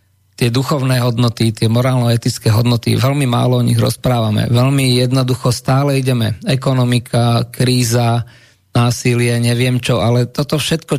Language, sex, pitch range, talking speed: Slovak, male, 115-130 Hz, 125 wpm